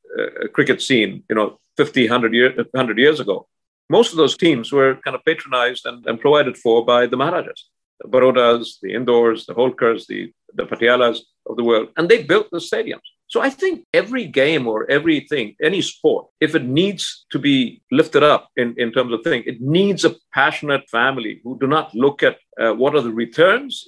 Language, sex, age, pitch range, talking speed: English, male, 50-69, 120-170 Hz, 195 wpm